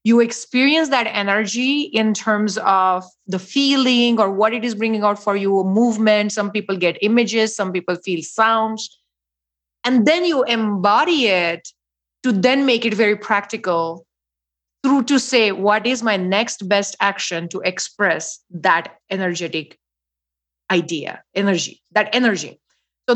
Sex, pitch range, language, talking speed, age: female, 185-245 Hz, English, 145 wpm, 30-49